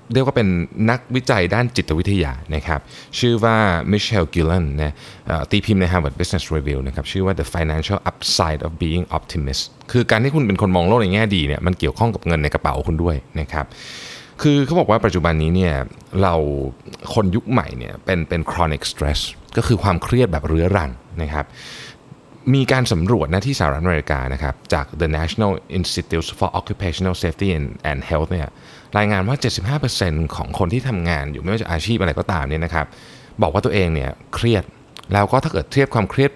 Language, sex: Thai, male